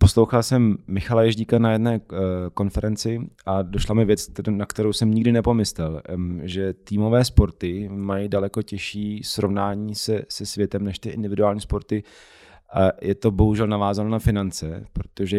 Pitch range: 95-110 Hz